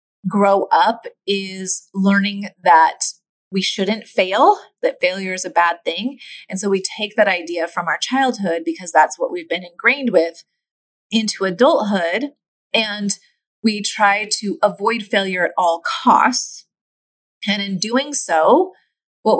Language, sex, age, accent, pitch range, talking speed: English, female, 30-49, American, 190-260 Hz, 140 wpm